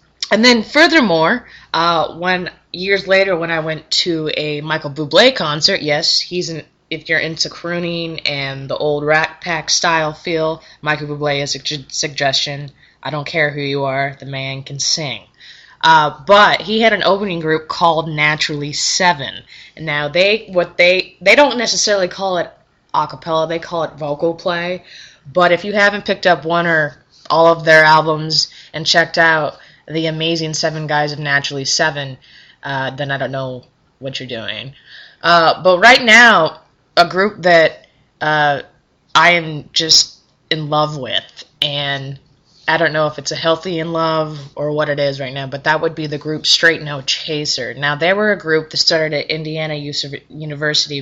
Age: 20-39